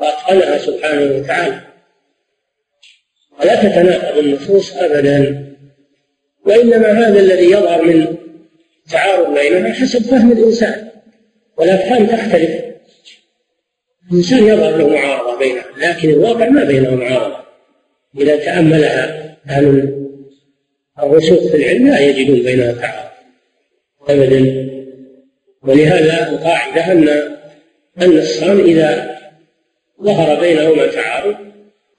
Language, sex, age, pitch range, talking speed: Arabic, male, 50-69, 150-205 Hz, 90 wpm